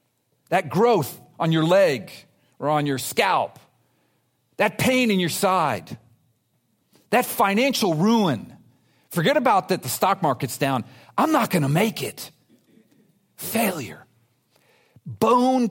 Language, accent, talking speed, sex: English, American, 120 wpm, male